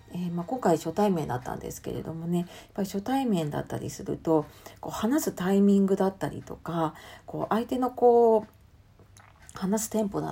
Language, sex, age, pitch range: Japanese, female, 40-59, 155-205 Hz